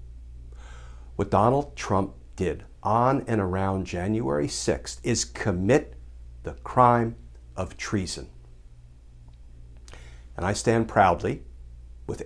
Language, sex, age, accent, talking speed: English, male, 60-79, American, 100 wpm